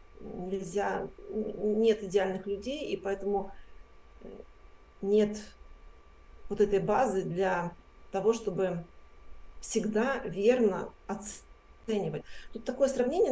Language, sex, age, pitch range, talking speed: Russian, female, 40-59, 185-220 Hz, 85 wpm